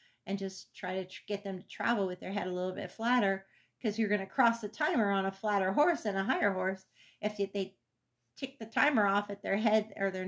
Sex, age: female, 40-59